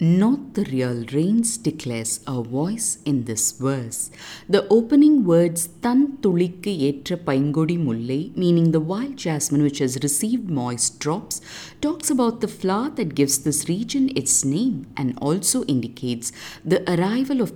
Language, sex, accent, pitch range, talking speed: English, female, Indian, 135-215 Hz, 145 wpm